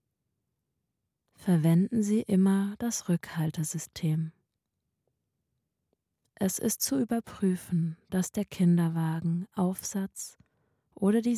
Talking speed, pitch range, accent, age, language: 80 wpm, 165-195 Hz, German, 20-39, German